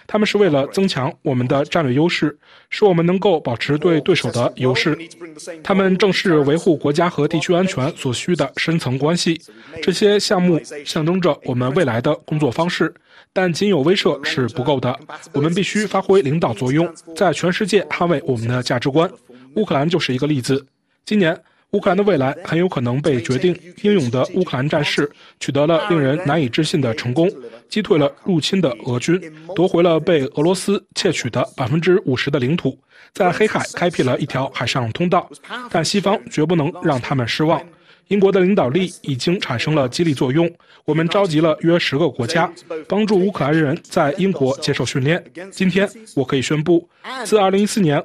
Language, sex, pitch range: Chinese, male, 140-185 Hz